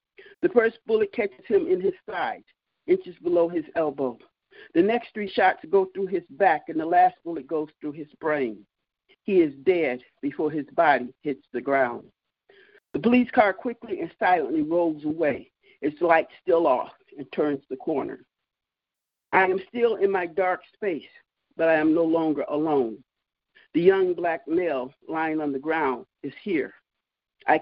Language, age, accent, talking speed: English, 50-69, American, 165 wpm